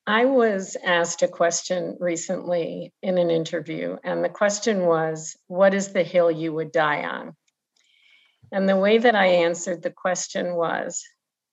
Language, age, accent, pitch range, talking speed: English, 50-69, American, 165-195 Hz, 155 wpm